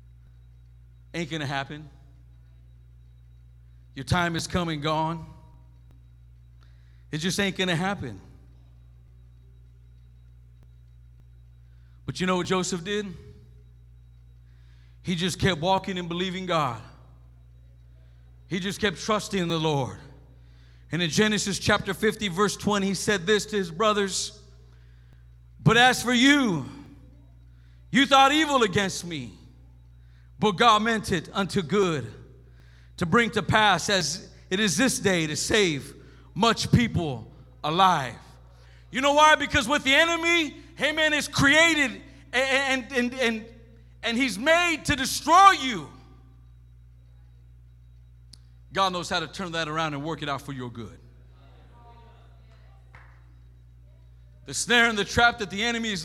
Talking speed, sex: 125 wpm, male